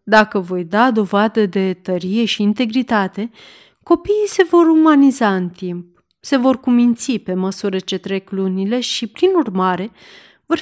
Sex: female